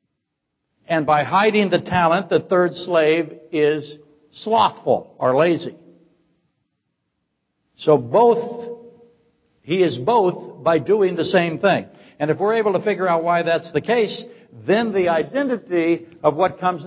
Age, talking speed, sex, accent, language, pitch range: 60-79, 140 wpm, male, American, English, 150-195 Hz